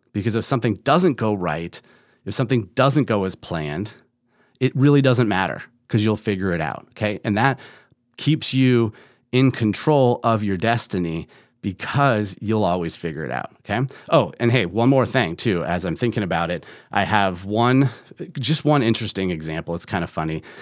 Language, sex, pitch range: English, male, 100-130 Hz